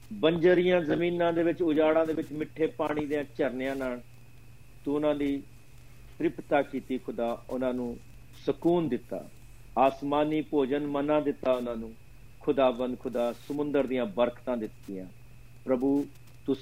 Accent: native